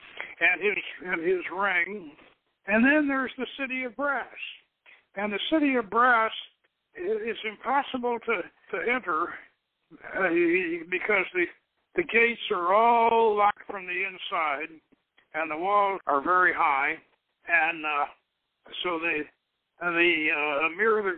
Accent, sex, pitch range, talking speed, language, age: American, male, 180-250 Hz, 135 wpm, English, 60-79